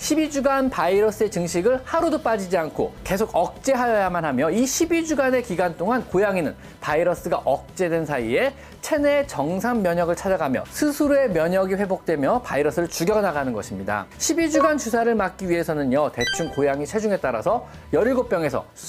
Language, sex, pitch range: Korean, male, 165-260 Hz